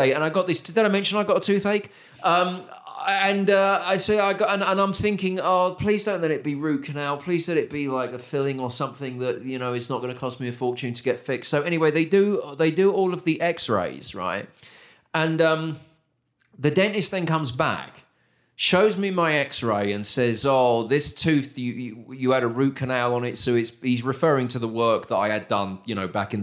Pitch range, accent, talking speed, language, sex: 120-165 Hz, British, 225 wpm, English, male